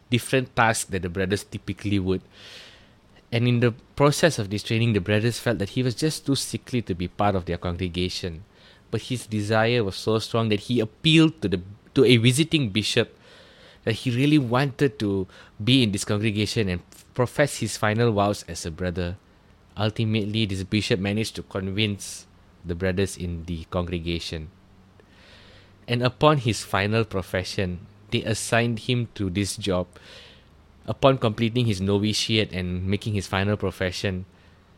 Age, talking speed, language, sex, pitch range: 20-39, 155 wpm, English, male, 95-115 Hz